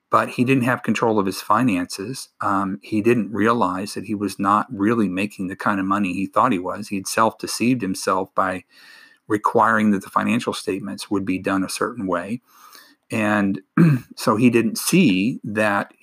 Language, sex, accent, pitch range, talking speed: English, male, American, 95-115 Hz, 180 wpm